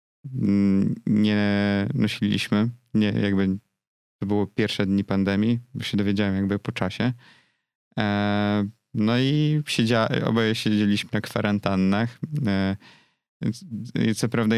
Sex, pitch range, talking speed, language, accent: male, 100-115 Hz, 105 wpm, Polish, native